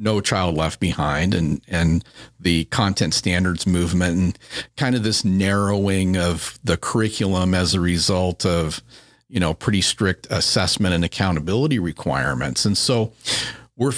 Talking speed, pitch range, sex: 140 wpm, 95-130 Hz, male